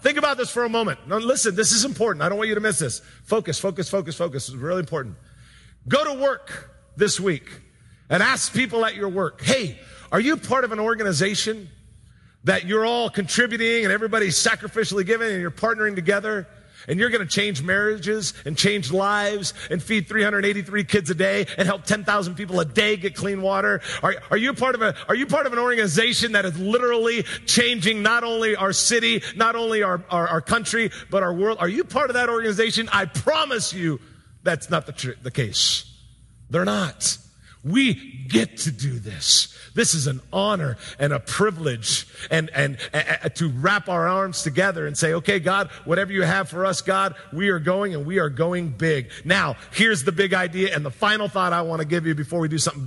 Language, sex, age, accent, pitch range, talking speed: English, male, 40-59, American, 150-215 Hz, 205 wpm